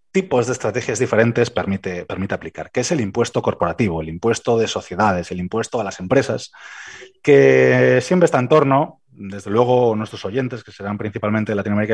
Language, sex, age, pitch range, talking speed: Spanish, male, 30-49, 100-145 Hz, 175 wpm